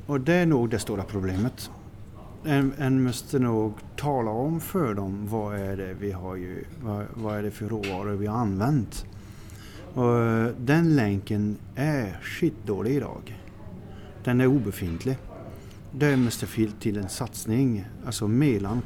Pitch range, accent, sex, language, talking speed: 105-125 Hz, native, male, Swedish, 150 wpm